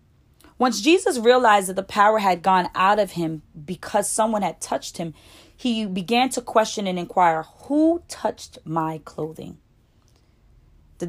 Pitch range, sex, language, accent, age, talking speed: 170-230 Hz, female, English, American, 20-39, 145 wpm